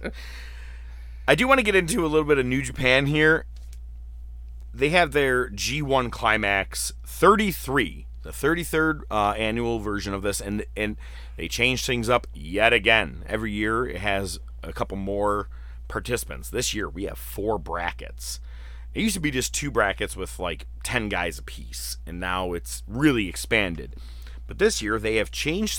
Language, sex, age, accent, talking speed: English, male, 30-49, American, 170 wpm